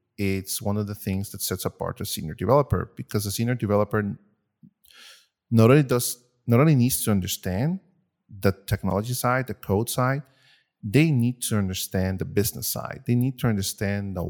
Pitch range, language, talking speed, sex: 95-115 Hz, English, 170 wpm, male